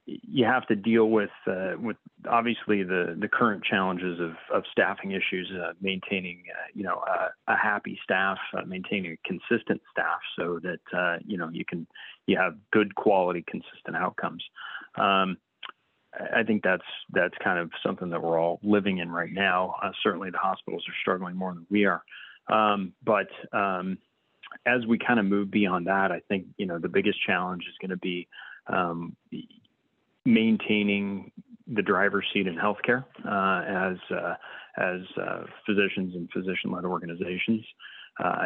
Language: English